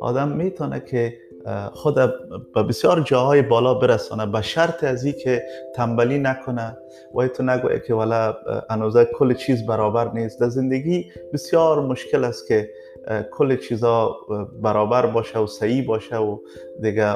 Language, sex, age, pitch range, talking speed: Persian, male, 30-49, 110-130 Hz, 145 wpm